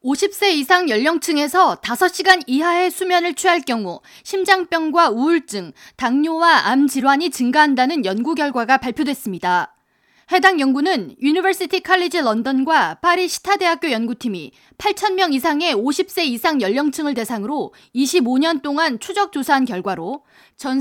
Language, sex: Korean, female